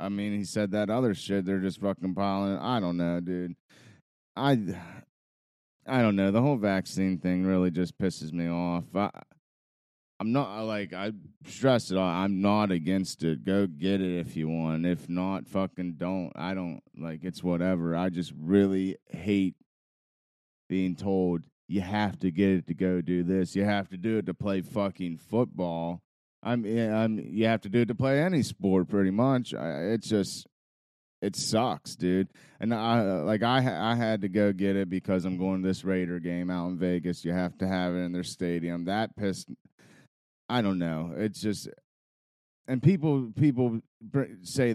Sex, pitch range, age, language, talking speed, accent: male, 90-110 Hz, 30-49, English, 185 wpm, American